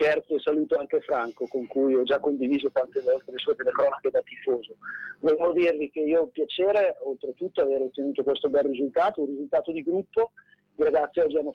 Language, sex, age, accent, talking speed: Spanish, male, 40-59, Italian, 190 wpm